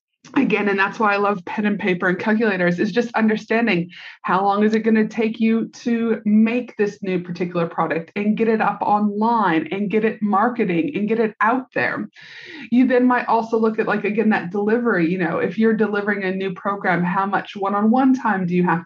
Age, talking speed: 30-49, 215 wpm